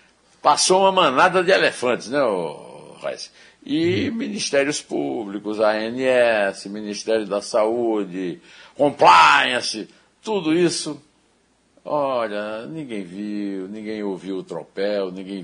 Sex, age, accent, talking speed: male, 60-79, Brazilian, 100 wpm